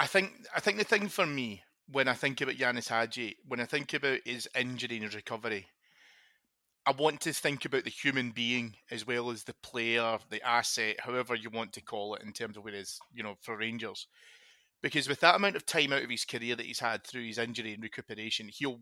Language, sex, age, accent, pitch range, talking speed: English, male, 30-49, British, 110-130 Hz, 230 wpm